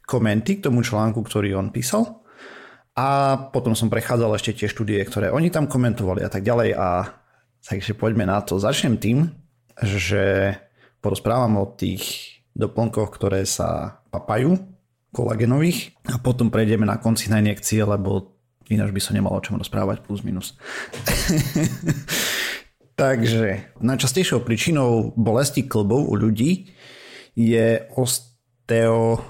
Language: Slovak